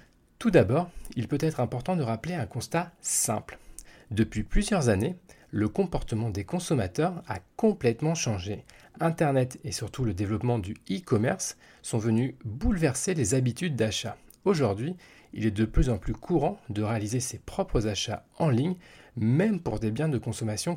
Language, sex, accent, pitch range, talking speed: French, male, French, 110-160 Hz, 160 wpm